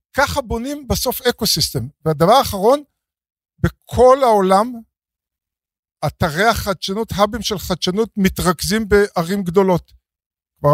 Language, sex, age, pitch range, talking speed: Hebrew, male, 50-69, 160-215 Hz, 100 wpm